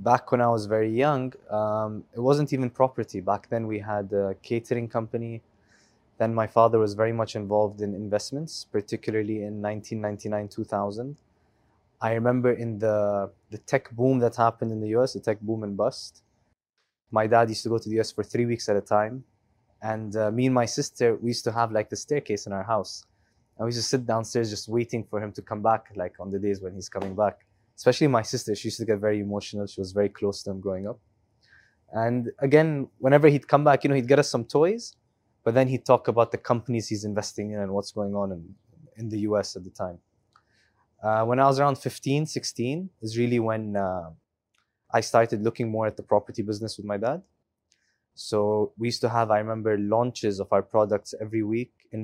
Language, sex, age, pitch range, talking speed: English, male, 20-39, 105-120 Hz, 215 wpm